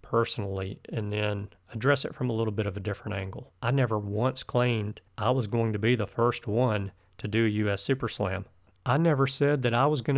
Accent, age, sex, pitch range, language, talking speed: American, 40-59, male, 115-145 Hz, English, 225 wpm